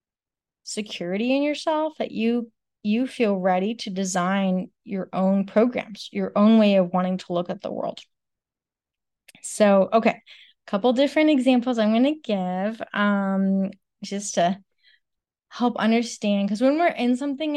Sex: female